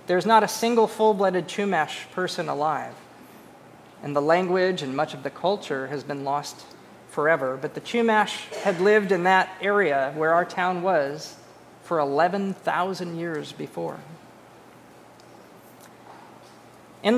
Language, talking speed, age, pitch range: English, 130 wpm, 40-59, 160-205 Hz